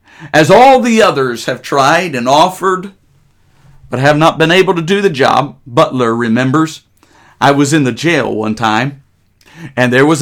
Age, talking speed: 50-69, 170 wpm